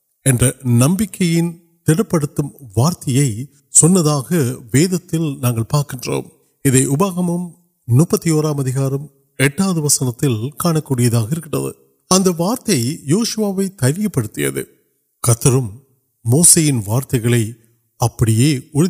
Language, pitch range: Urdu, 120-160 Hz